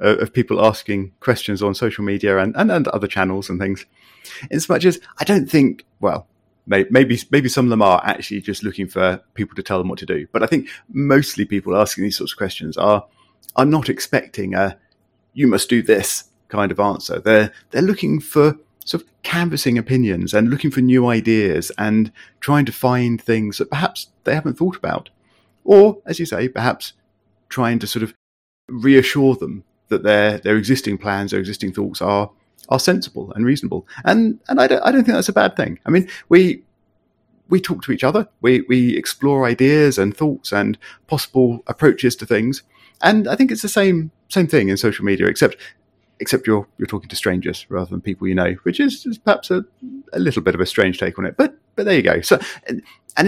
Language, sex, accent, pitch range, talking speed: English, male, British, 100-145 Hz, 205 wpm